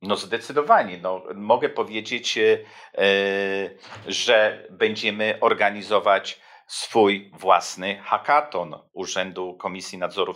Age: 50-69